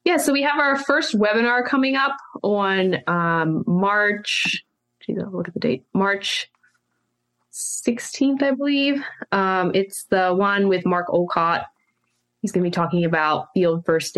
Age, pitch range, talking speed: 20-39, 160-200 Hz, 155 wpm